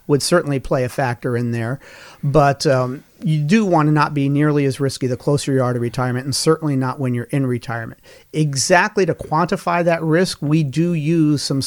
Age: 40-59